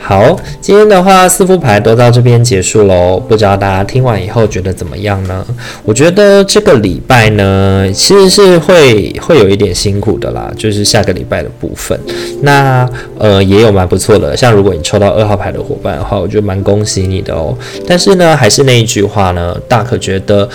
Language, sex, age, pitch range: Chinese, male, 20-39, 100-125 Hz